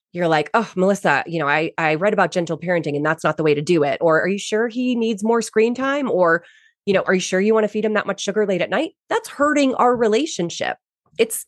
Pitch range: 160-245 Hz